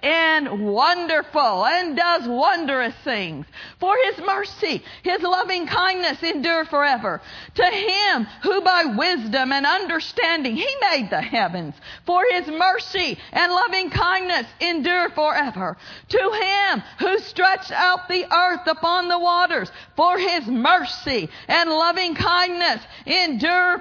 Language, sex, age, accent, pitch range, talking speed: English, female, 50-69, American, 325-370 Hz, 125 wpm